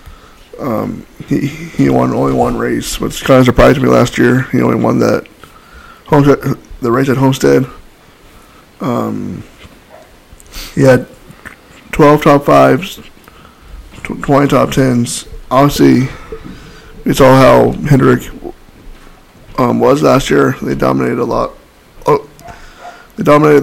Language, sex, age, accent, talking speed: English, male, 20-39, American, 105 wpm